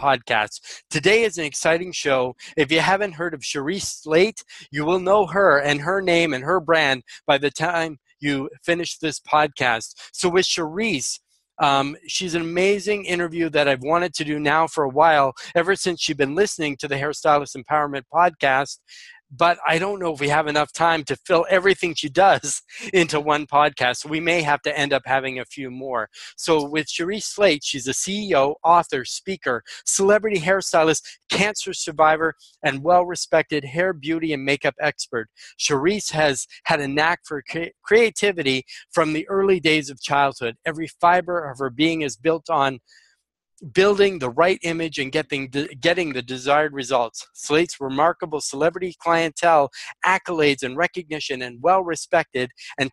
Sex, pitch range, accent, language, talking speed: male, 145-175 Hz, American, English, 165 wpm